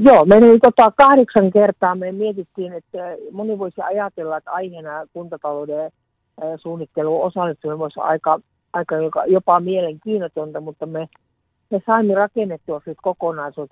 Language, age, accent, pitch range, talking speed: Finnish, 60-79, native, 150-180 Hz, 115 wpm